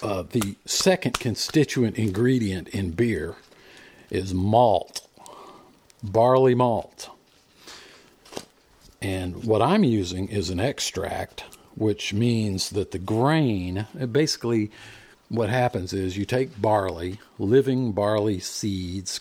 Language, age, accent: English, 50-69, American